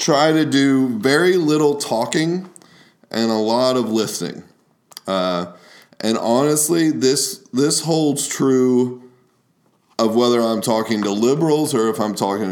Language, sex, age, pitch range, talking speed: English, male, 20-39, 95-130 Hz, 135 wpm